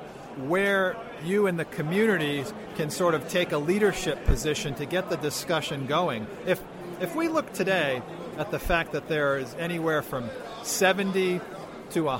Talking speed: 155 wpm